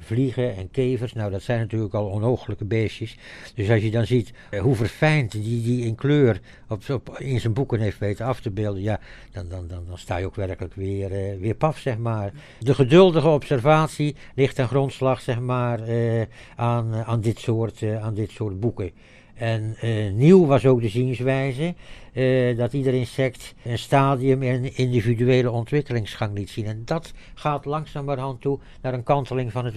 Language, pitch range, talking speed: Dutch, 110-130 Hz, 180 wpm